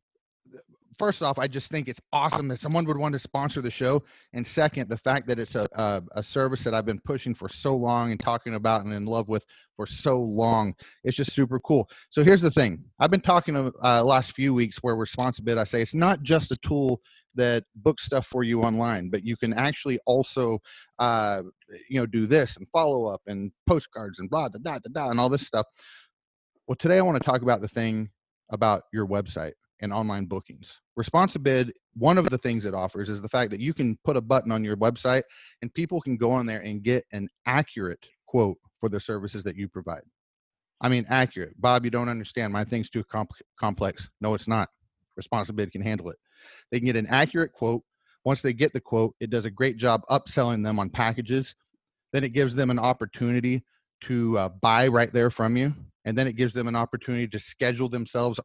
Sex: male